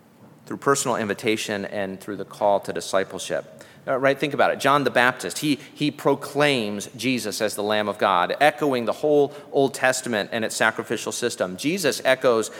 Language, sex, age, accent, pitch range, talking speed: English, male, 40-59, American, 115-140 Hz, 175 wpm